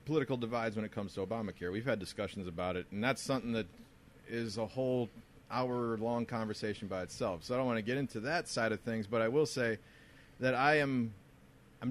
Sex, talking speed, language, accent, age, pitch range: male, 210 wpm, English, American, 30-49, 115-150 Hz